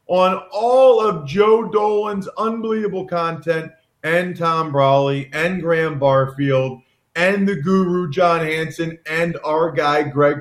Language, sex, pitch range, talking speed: English, male, 160-205 Hz, 125 wpm